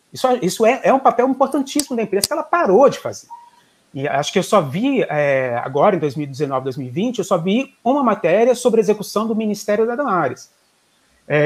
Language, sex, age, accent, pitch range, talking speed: Portuguese, male, 30-49, Brazilian, 150-225 Hz, 200 wpm